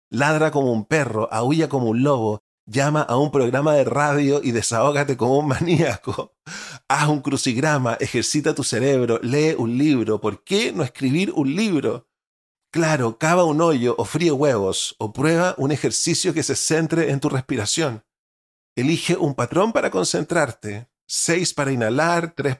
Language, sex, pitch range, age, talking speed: Spanish, male, 115-155 Hz, 40-59, 160 wpm